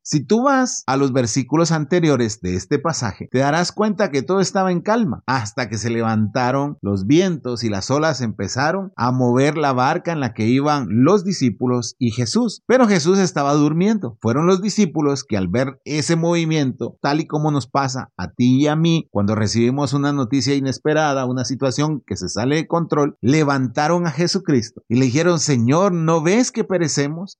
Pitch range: 125-175 Hz